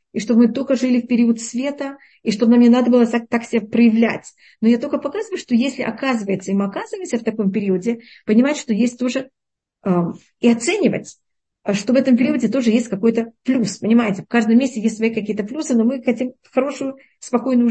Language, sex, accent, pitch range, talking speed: Russian, female, native, 205-245 Hz, 200 wpm